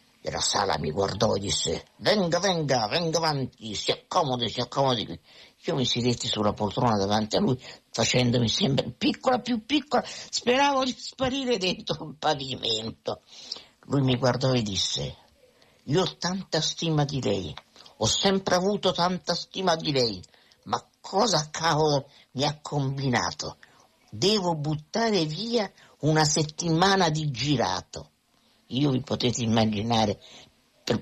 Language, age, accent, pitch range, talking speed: Italian, 50-69, native, 125-205 Hz, 135 wpm